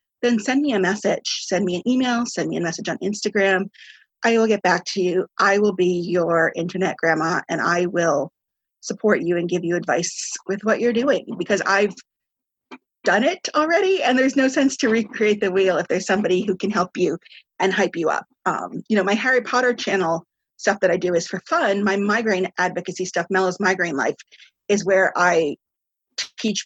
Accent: American